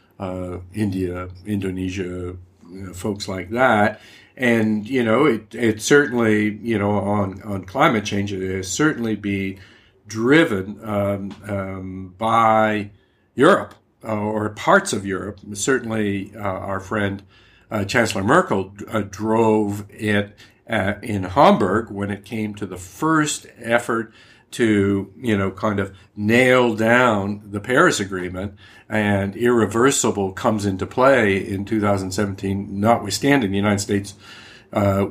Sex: male